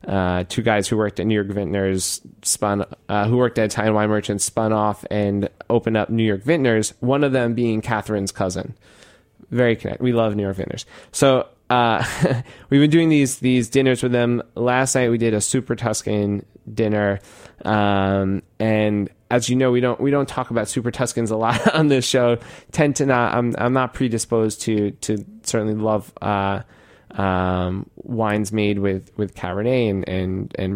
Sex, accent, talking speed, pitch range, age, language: male, American, 185 wpm, 100-115 Hz, 20-39, English